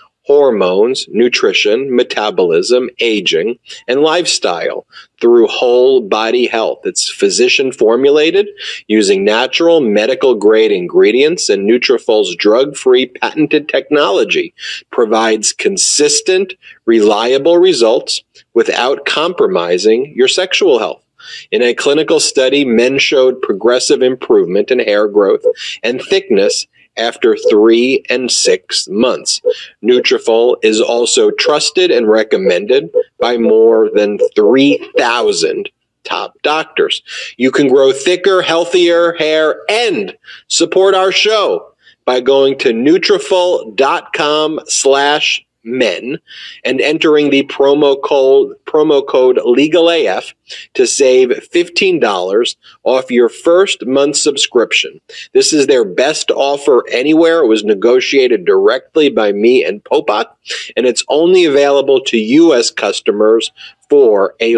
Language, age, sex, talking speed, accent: English, 30-49, male, 110 wpm, American